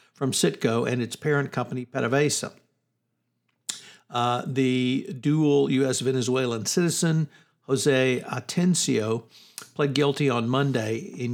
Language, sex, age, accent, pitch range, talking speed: English, male, 60-79, American, 120-140 Hz, 100 wpm